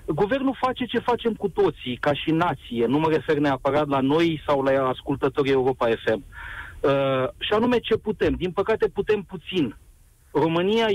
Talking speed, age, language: 165 wpm, 40-59, Romanian